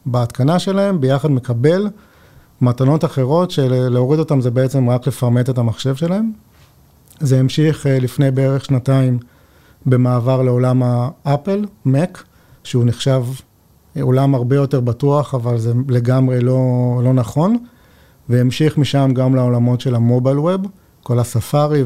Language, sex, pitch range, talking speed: Hebrew, male, 125-140 Hz, 125 wpm